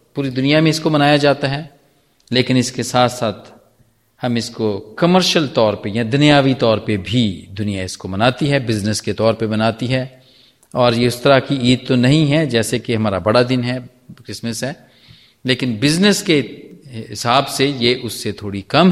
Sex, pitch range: male, 115-145 Hz